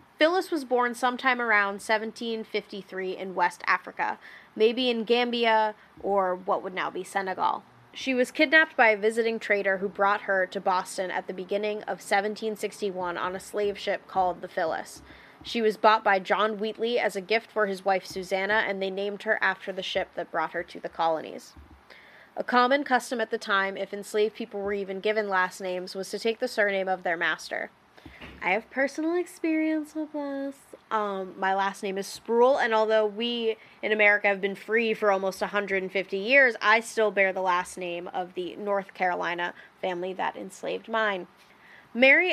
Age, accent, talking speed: 20-39, American, 185 wpm